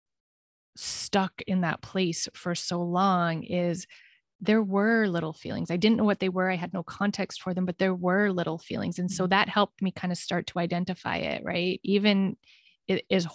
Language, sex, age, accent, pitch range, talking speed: English, female, 20-39, American, 175-200 Hz, 195 wpm